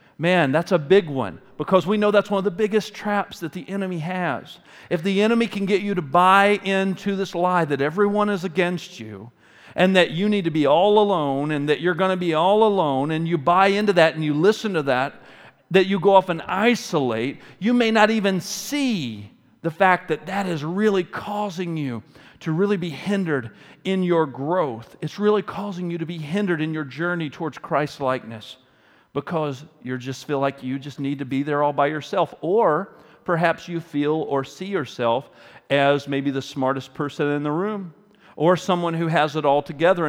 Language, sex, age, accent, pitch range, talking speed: English, male, 40-59, American, 140-190 Hz, 200 wpm